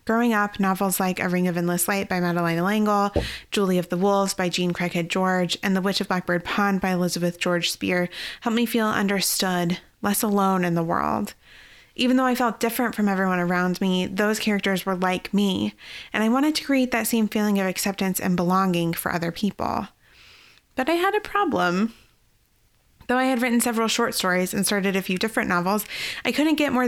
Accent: American